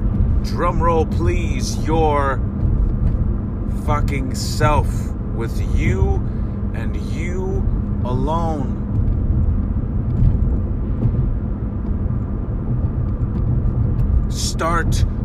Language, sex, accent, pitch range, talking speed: English, male, American, 100-110 Hz, 45 wpm